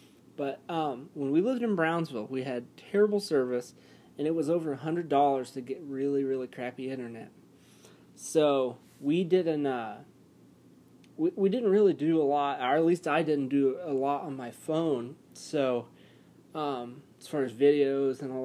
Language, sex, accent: English, male, American